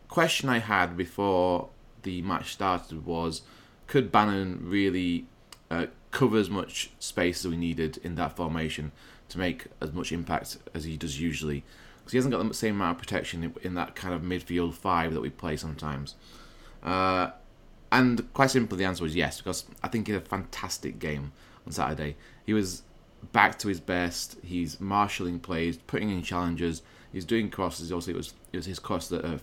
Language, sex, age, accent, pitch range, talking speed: English, male, 20-39, British, 80-100 Hz, 185 wpm